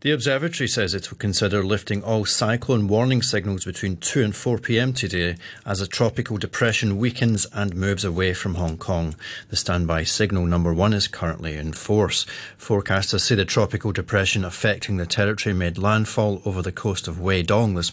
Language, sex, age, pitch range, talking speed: English, male, 30-49, 100-120 Hz, 175 wpm